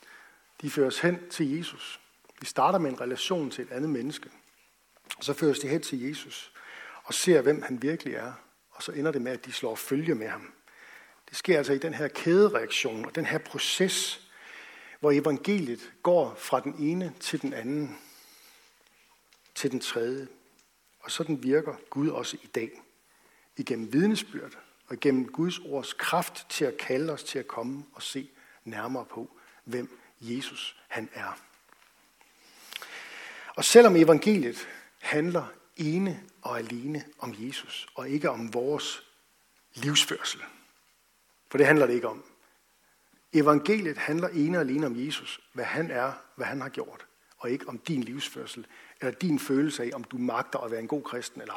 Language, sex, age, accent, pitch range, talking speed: Danish, male, 60-79, native, 135-175 Hz, 165 wpm